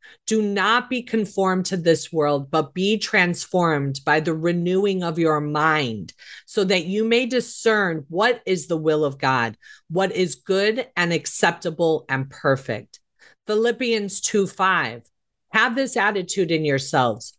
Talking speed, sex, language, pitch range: 140 wpm, female, English, 155-215 Hz